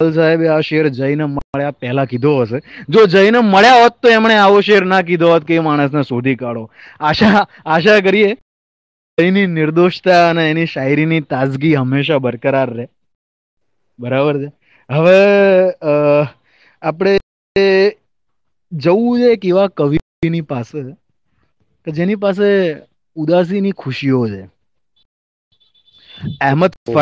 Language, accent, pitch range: Gujarati, native, 140-195 Hz